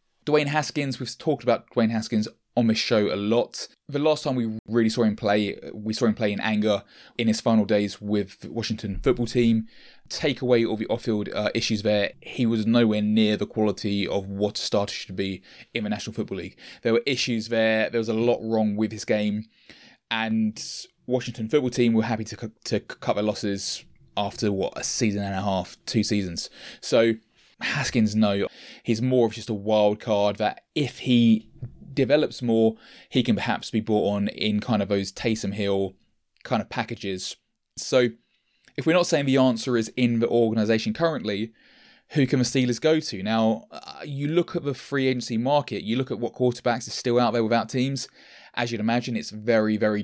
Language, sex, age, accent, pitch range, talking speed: English, male, 20-39, British, 105-125 Hz, 195 wpm